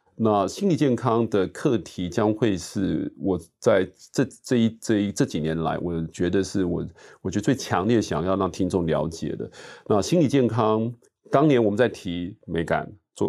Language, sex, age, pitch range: Chinese, male, 30-49, 90-110 Hz